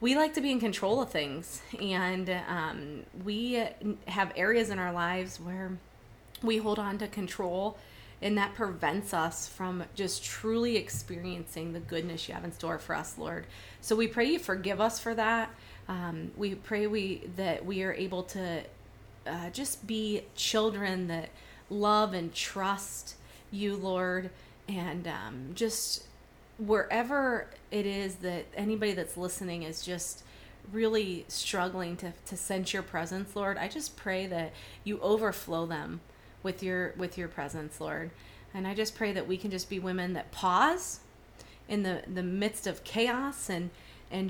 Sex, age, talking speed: female, 30-49, 160 wpm